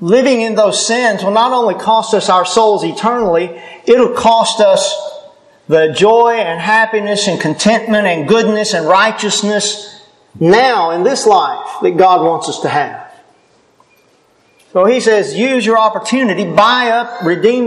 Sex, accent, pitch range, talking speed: male, American, 185-245 Hz, 155 wpm